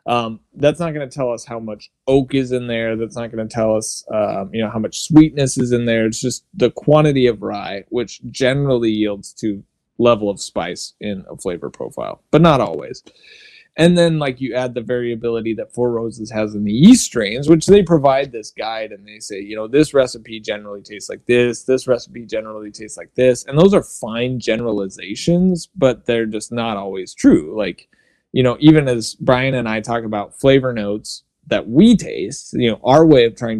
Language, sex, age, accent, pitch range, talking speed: English, male, 20-39, American, 110-140 Hz, 210 wpm